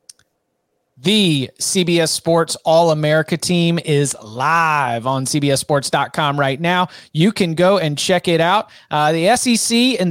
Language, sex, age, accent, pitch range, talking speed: English, male, 30-49, American, 155-180 Hz, 130 wpm